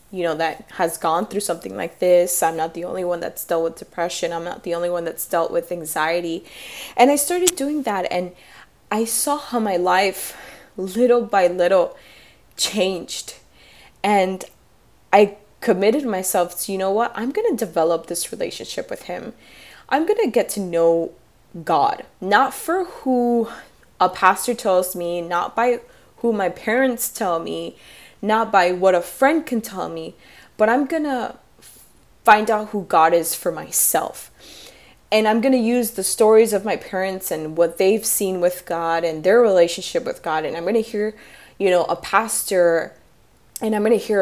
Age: 20-39